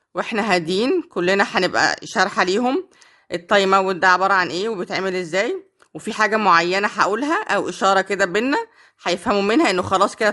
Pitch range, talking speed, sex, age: 185-220 Hz, 155 wpm, female, 20-39